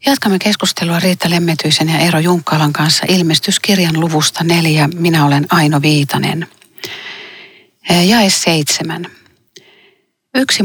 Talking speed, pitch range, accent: 100 wpm, 150-185 Hz, native